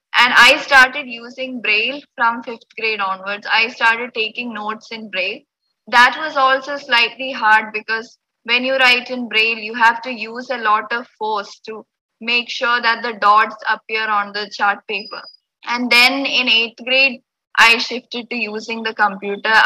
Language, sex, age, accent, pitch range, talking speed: English, female, 20-39, Indian, 220-250 Hz, 170 wpm